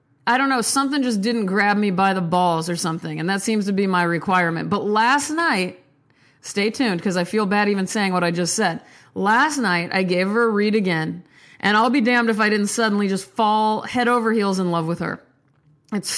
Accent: American